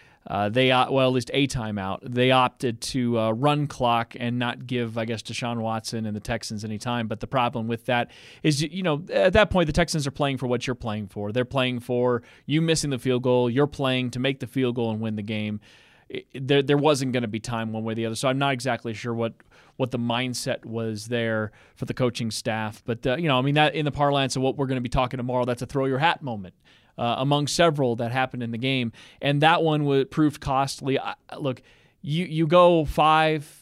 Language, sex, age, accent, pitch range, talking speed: English, male, 30-49, American, 120-145 Hz, 240 wpm